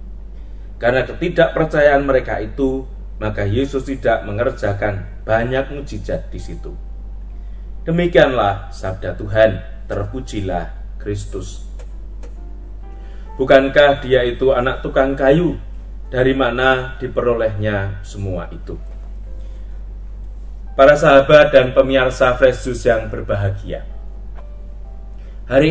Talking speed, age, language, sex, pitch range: 85 wpm, 30-49, Indonesian, male, 95-135 Hz